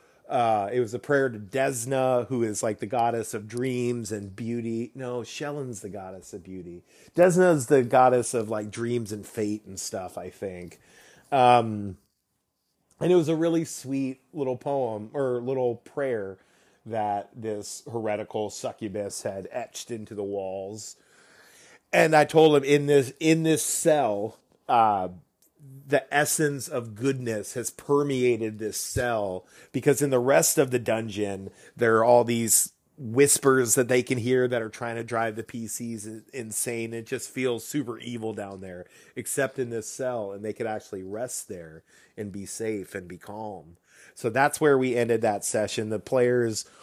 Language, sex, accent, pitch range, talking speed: English, male, American, 105-130 Hz, 165 wpm